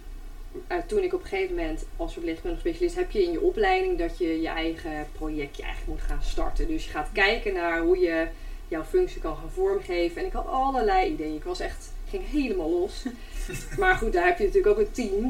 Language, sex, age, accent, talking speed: Dutch, female, 30-49, Dutch, 220 wpm